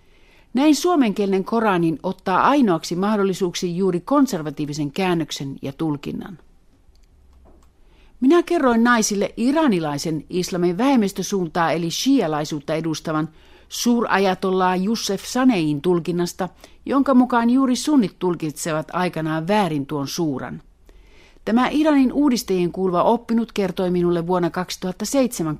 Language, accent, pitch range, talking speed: Finnish, native, 160-225 Hz, 100 wpm